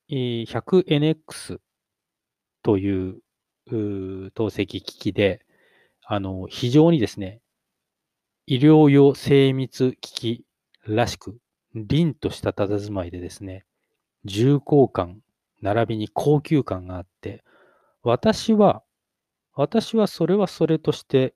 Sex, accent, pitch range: male, native, 105-160 Hz